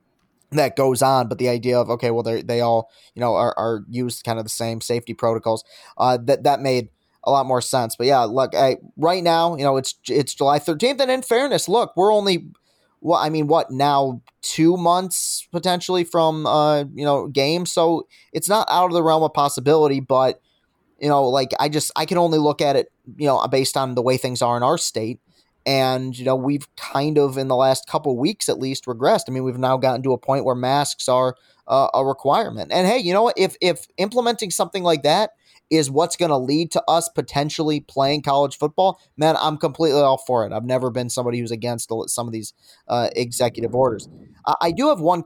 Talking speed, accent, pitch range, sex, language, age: 225 wpm, American, 130-170 Hz, male, English, 20-39